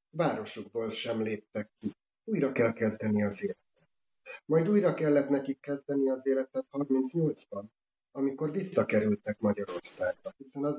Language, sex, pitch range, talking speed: Hungarian, male, 130-155 Hz, 120 wpm